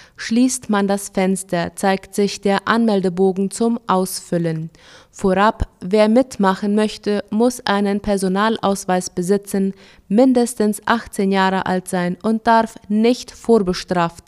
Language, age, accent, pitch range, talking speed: German, 20-39, German, 190-220 Hz, 115 wpm